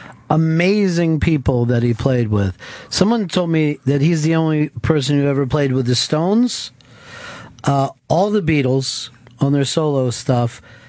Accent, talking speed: American, 155 wpm